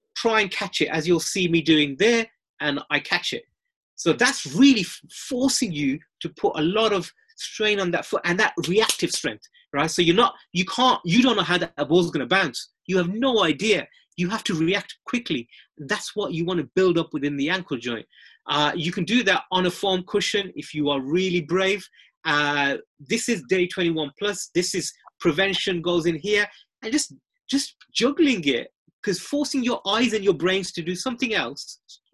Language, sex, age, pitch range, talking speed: English, male, 30-49, 155-210 Hz, 205 wpm